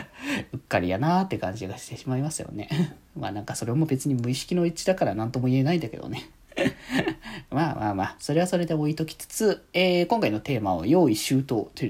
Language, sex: Japanese, male